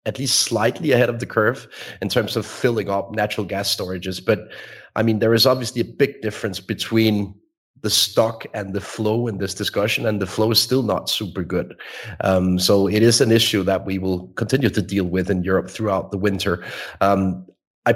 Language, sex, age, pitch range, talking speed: English, male, 30-49, 95-115 Hz, 205 wpm